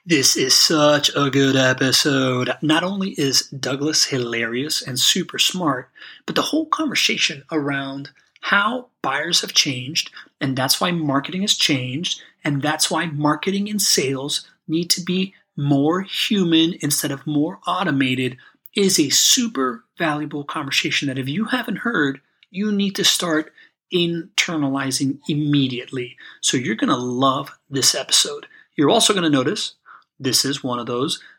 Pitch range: 135-195 Hz